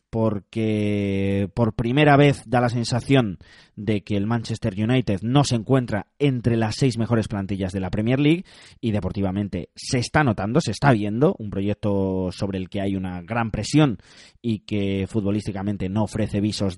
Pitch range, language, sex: 100-130 Hz, Spanish, male